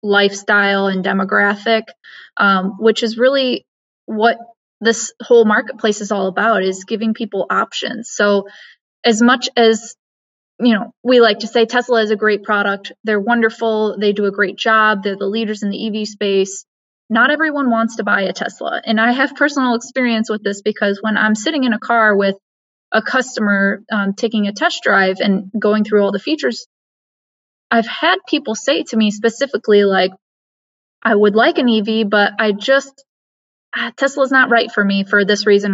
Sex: female